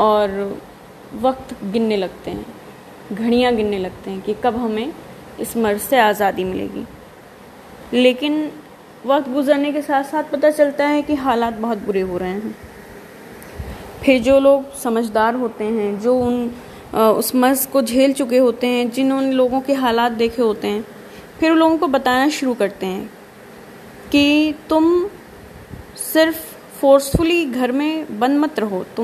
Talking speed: 155 wpm